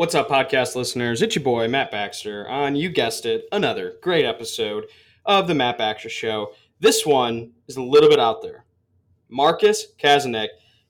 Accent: American